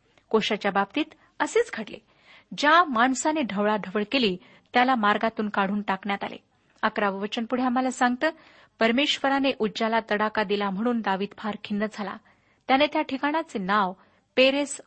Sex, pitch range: female, 205-260 Hz